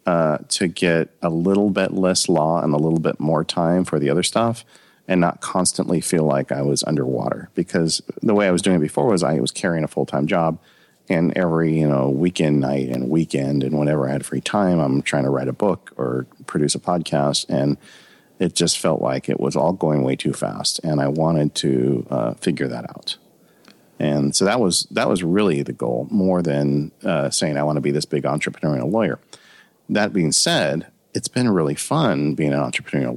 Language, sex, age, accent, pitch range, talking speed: English, male, 40-59, American, 70-90 Hz, 215 wpm